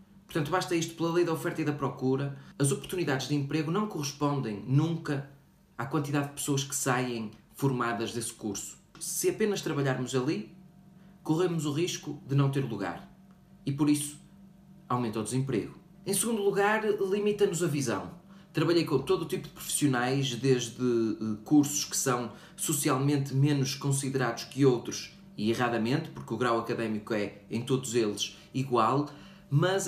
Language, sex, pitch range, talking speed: Portuguese, male, 130-175 Hz, 155 wpm